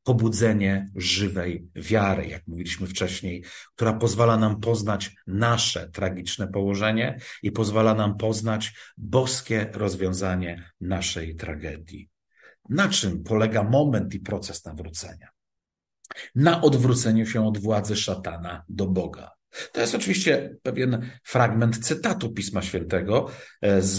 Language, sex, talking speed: Polish, male, 115 wpm